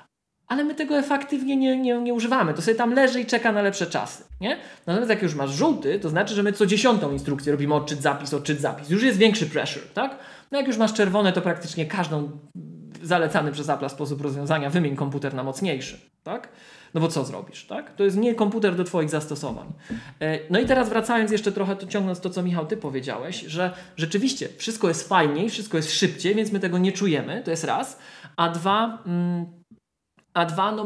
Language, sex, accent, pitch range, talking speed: Polish, male, native, 155-205 Hz, 205 wpm